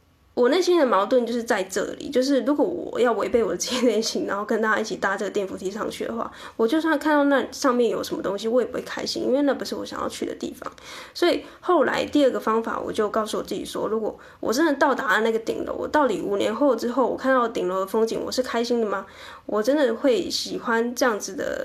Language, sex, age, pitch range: Chinese, female, 10-29, 215-285 Hz